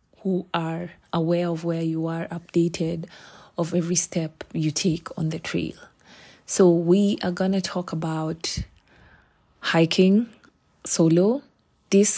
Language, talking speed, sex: English, 130 wpm, female